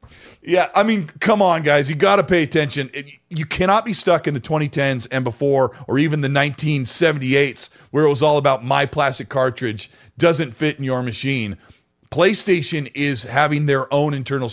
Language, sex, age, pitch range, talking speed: English, male, 40-59, 120-160 Hz, 180 wpm